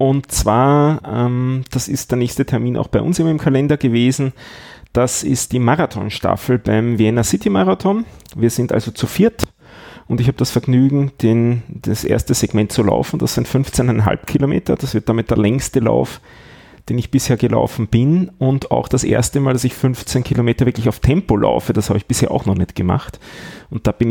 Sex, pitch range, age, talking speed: male, 110-130 Hz, 30-49, 190 wpm